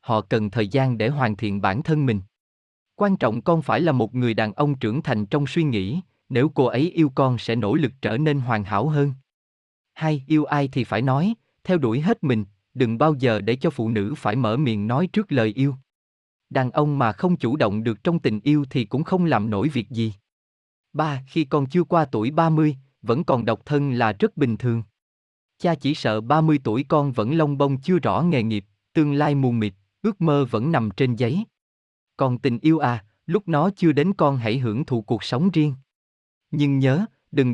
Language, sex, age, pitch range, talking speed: Vietnamese, male, 20-39, 110-155 Hz, 215 wpm